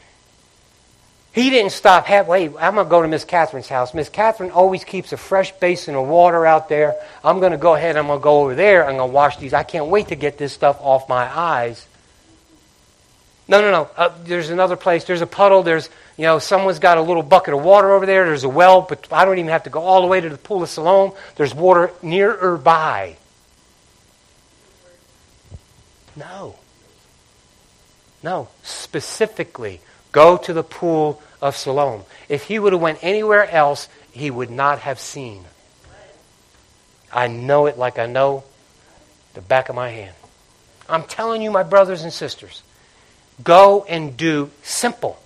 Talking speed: 175 wpm